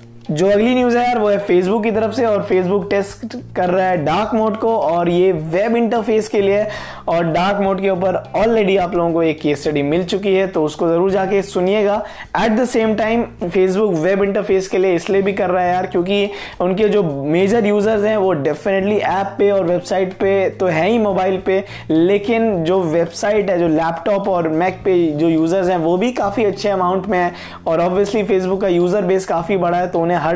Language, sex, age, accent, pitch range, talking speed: Hindi, male, 20-39, native, 180-215 Hz, 215 wpm